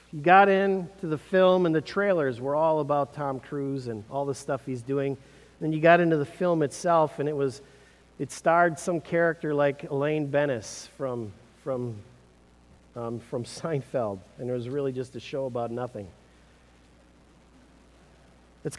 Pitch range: 125-190 Hz